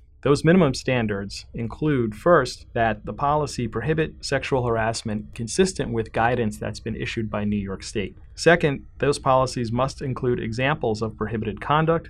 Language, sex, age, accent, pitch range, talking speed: English, male, 30-49, American, 110-135 Hz, 150 wpm